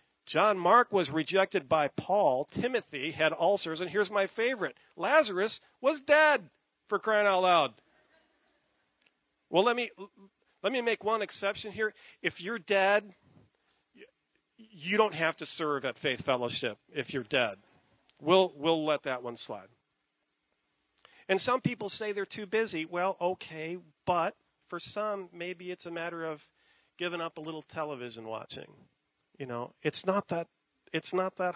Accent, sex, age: American, male, 40-59